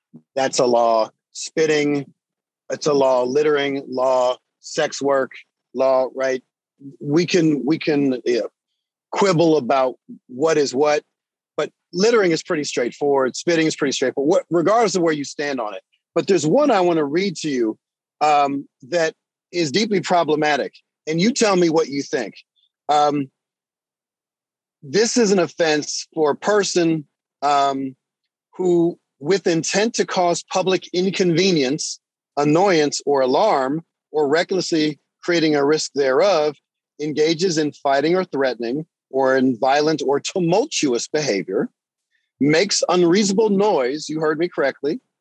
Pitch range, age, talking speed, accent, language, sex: 145-185 Hz, 40-59, 135 wpm, American, English, male